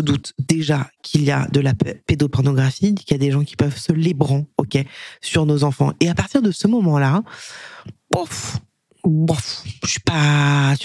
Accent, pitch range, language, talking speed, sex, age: French, 140-175 Hz, French, 170 wpm, female, 20-39